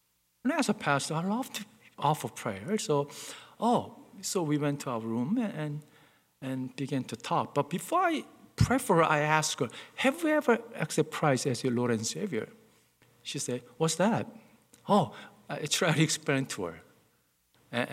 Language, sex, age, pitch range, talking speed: English, male, 50-69, 125-190 Hz, 180 wpm